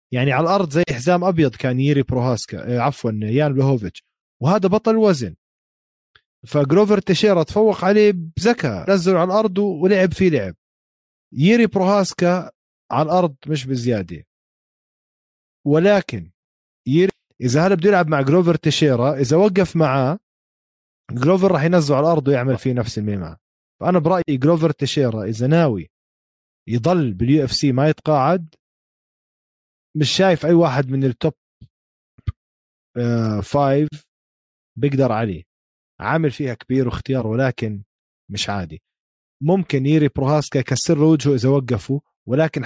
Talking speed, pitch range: 125 wpm, 120-165 Hz